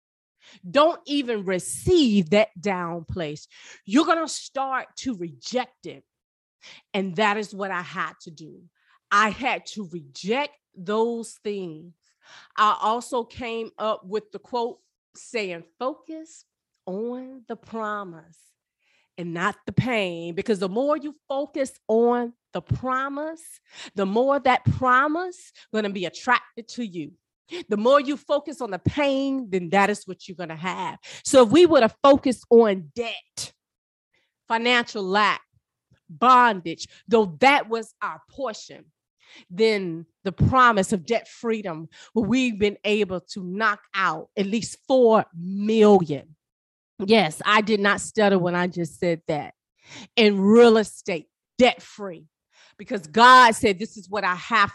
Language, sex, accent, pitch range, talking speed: English, female, American, 185-245 Hz, 145 wpm